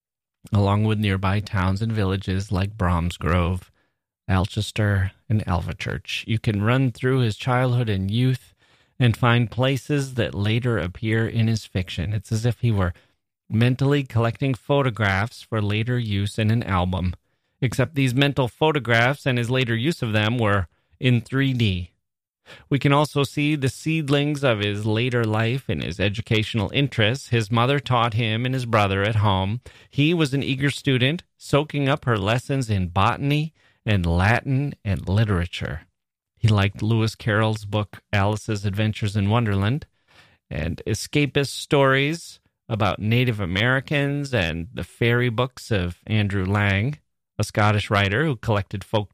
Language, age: English, 30-49